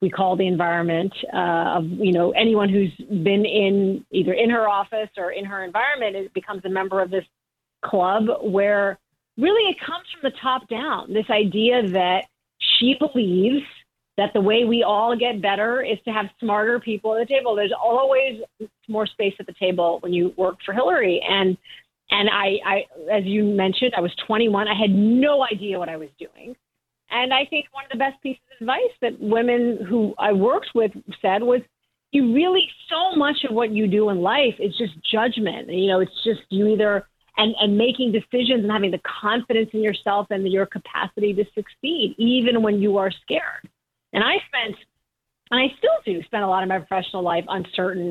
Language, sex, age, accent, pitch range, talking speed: English, female, 30-49, American, 190-235 Hz, 195 wpm